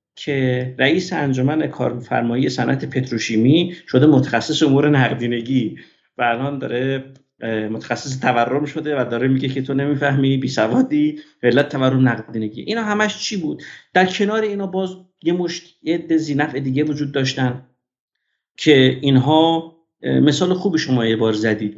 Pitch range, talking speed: 130-170 Hz, 130 wpm